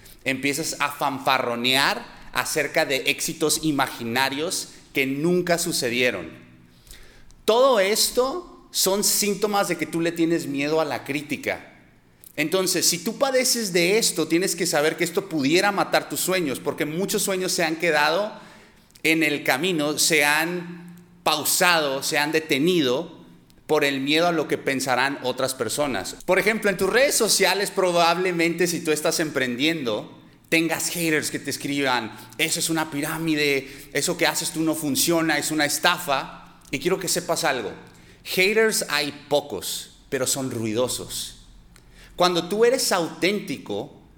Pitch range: 140-175 Hz